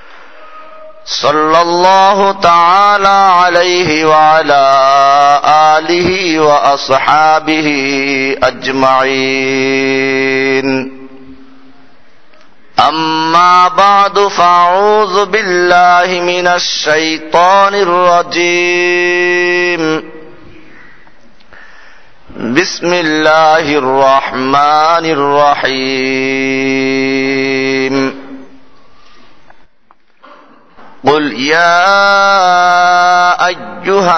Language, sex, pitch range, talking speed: Bengali, male, 145-180 Hz, 40 wpm